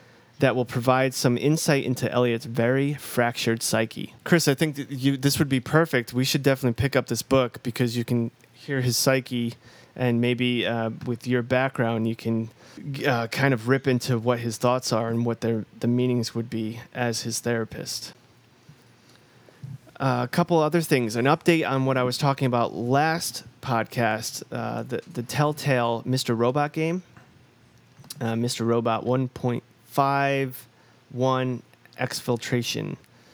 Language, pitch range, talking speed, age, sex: English, 120-135 Hz, 155 wpm, 30-49, male